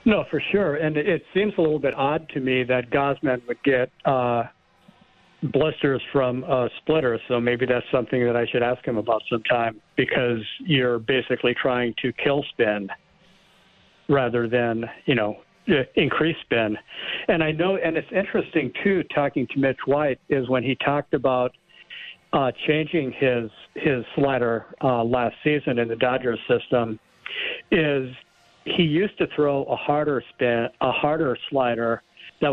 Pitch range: 120-145 Hz